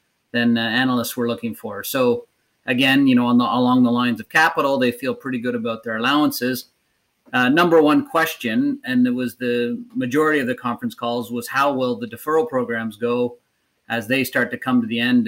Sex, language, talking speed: male, English, 205 wpm